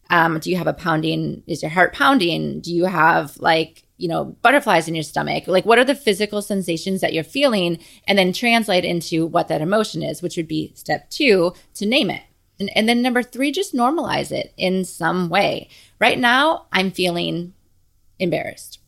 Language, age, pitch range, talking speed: English, 20-39, 165-230 Hz, 195 wpm